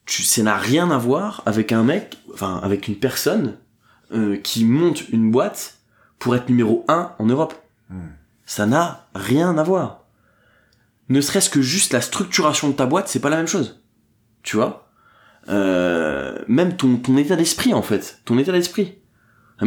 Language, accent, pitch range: French, French, 105-135 Hz